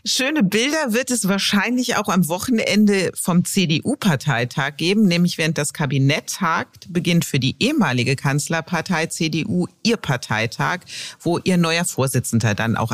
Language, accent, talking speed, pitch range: German, German, 140 wpm, 135-195 Hz